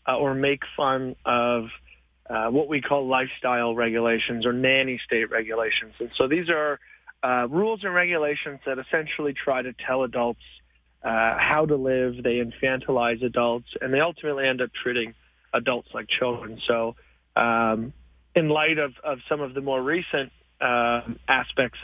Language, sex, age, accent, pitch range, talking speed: English, male, 40-59, American, 120-140 Hz, 160 wpm